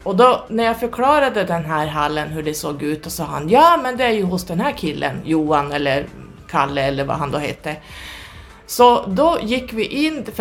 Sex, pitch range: female, 150-195 Hz